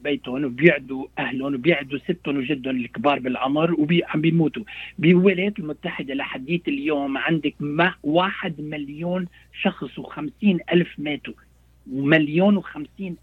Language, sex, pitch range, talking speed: Arabic, male, 130-200 Hz, 115 wpm